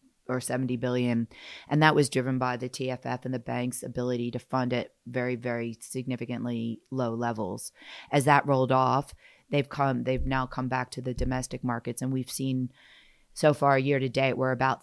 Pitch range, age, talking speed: 120-130 Hz, 30-49, 185 wpm